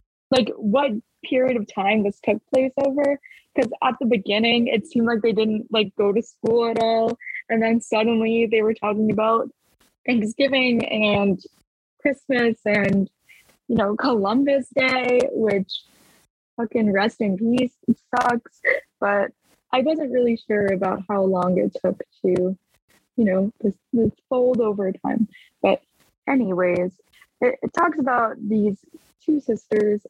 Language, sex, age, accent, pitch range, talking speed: English, female, 20-39, American, 205-250 Hz, 140 wpm